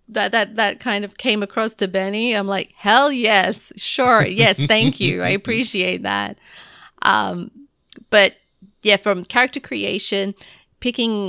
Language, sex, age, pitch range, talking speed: English, female, 30-49, 175-205 Hz, 145 wpm